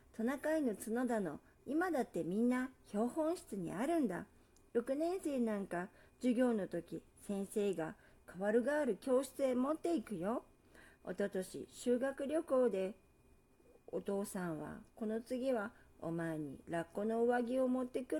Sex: female